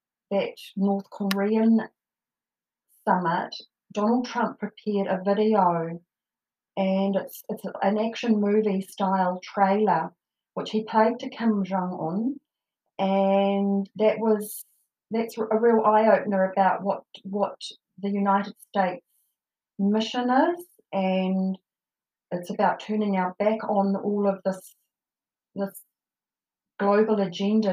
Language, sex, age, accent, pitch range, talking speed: English, female, 40-59, Australian, 185-210 Hz, 115 wpm